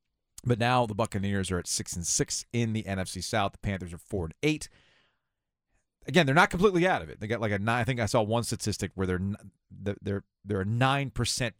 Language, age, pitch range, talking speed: English, 40-59, 95-130 Hz, 230 wpm